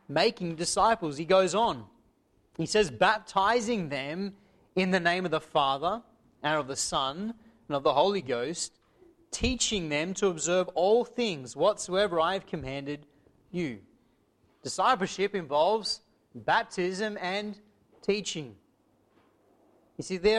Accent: Australian